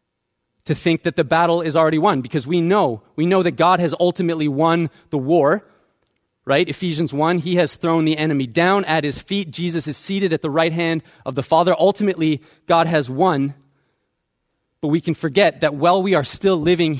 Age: 30-49